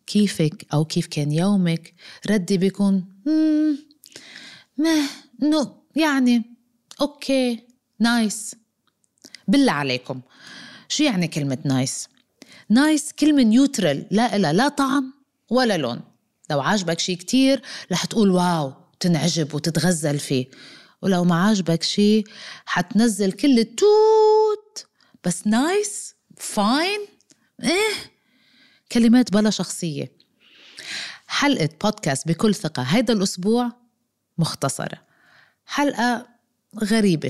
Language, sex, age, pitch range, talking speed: Arabic, female, 30-49, 165-250 Hz, 100 wpm